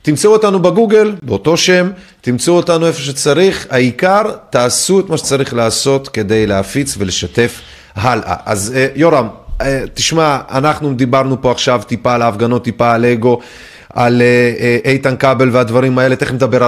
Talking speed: 150 wpm